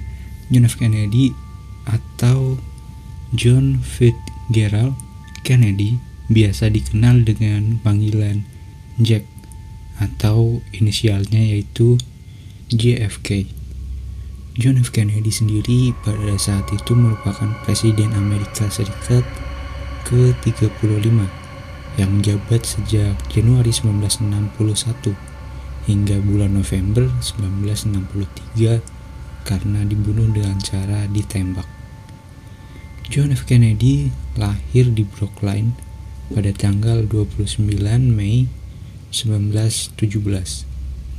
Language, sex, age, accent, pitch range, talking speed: Indonesian, male, 20-39, native, 100-115 Hz, 75 wpm